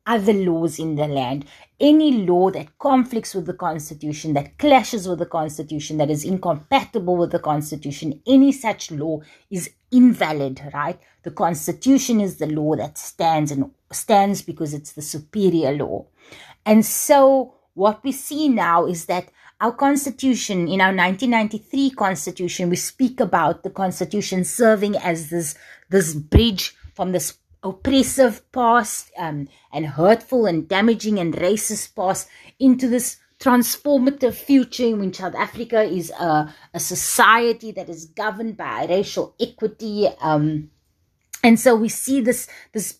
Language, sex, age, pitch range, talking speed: English, female, 30-49, 170-230 Hz, 150 wpm